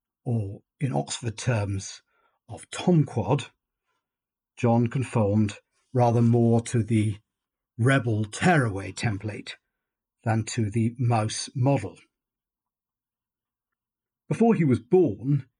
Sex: male